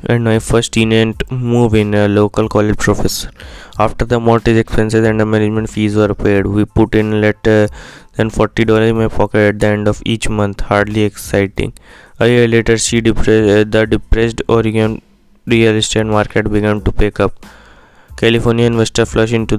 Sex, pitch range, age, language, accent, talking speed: male, 105-115 Hz, 20-39, English, Indian, 180 wpm